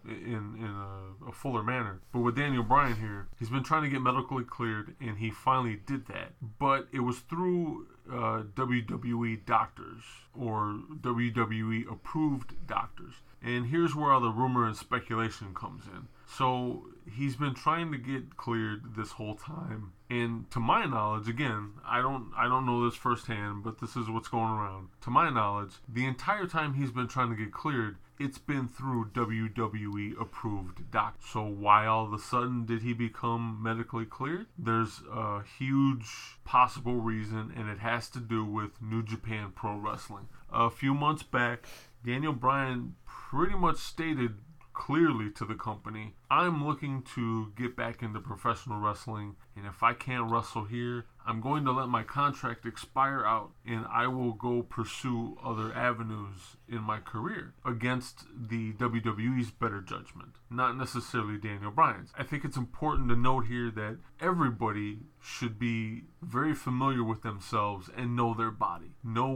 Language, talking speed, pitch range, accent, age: English, 165 wpm, 110-130 Hz, American, 20-39